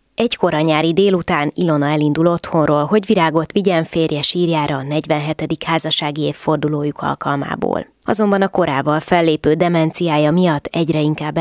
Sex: female